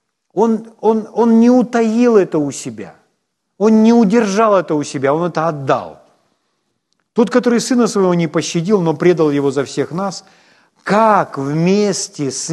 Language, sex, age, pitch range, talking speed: Ukrainian, male, 40-59, 155-235 Hz, 150 wpm